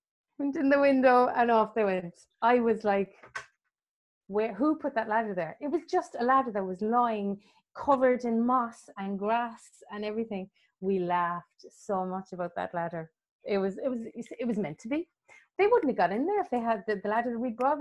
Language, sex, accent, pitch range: English, female, Irish, 200-285 Hz